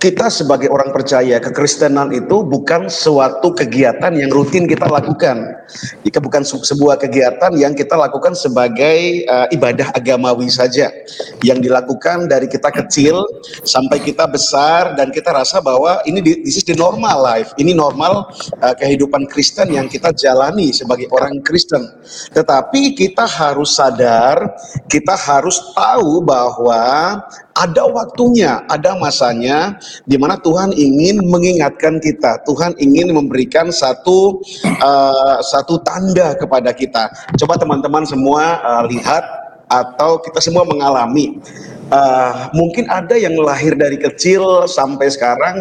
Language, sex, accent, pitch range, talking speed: Indonesian, male, native, 140-180 Hz, 130 wpm